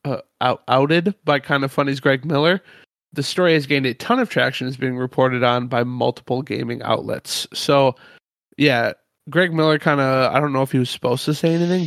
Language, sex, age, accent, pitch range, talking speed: English, male, 20-39, American, 125-150 Hz, 200 wpm